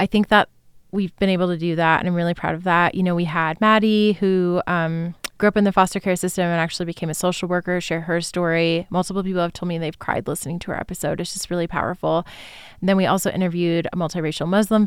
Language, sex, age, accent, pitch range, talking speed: English, female, 20-39, American, 170-195 Hz, 245 wpm